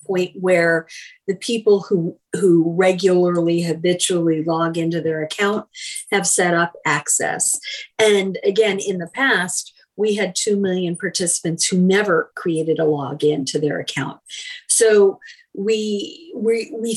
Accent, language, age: American, English, 50-69